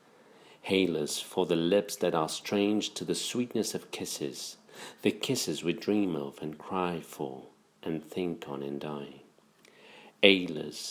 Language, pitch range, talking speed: English, 75-95 Hz, 150 wpm